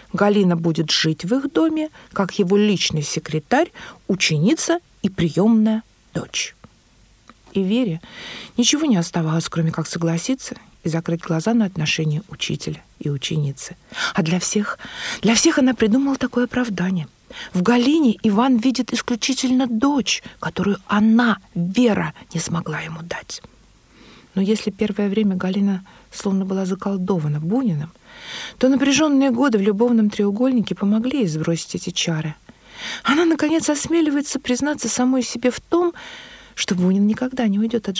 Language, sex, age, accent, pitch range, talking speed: Russian, female, 50-69, native, 180-245 Hz, 135 wpm